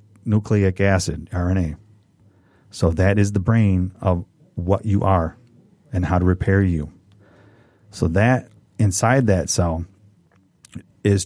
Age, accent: 40-59, American